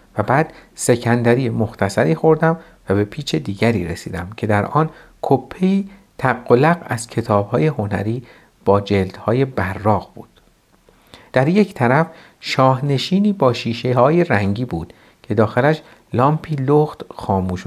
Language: Persian